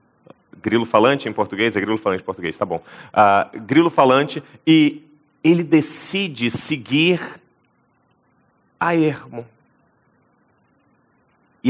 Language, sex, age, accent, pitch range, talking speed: English, male, 30-49, Brazilian, 110-145 Hz, 105 wpm